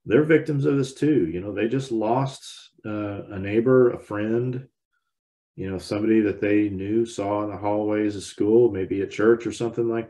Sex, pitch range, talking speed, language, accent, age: male, 95-120 Hz, 195 wpm, English, American, 40-59